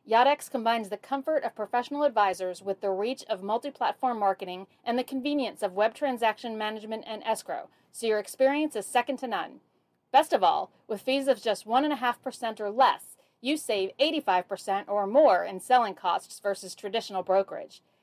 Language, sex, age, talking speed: English, female, 40-59, 165 wpm